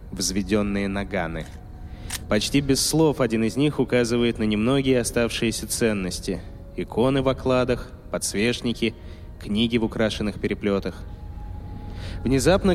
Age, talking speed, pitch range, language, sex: 20-39, 105 wpm, 90-120 Hz, Russian, male